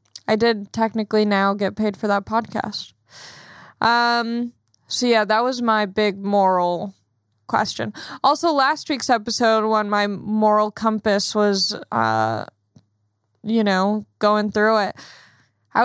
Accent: American